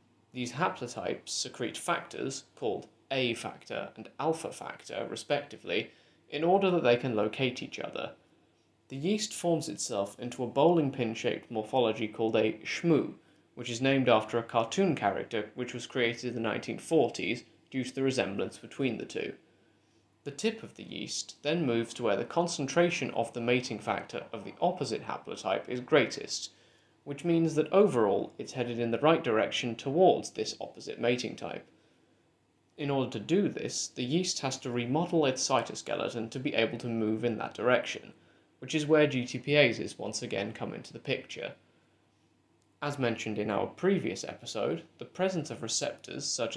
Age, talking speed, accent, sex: 20-39, 160 wpm, British, male